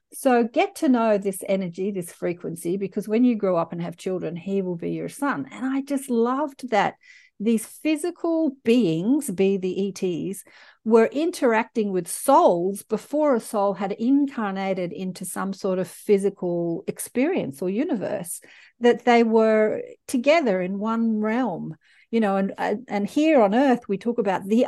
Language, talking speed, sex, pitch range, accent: English, 165 wpm, female, 195-255 Hz, Australian